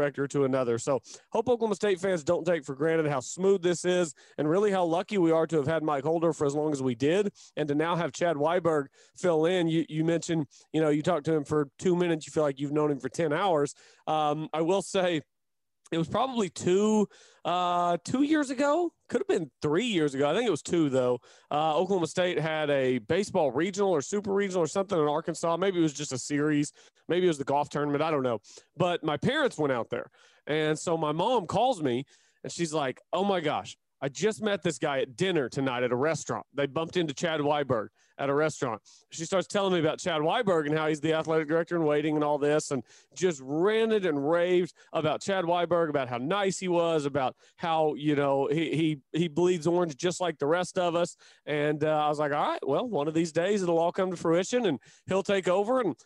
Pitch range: 150-180 Hz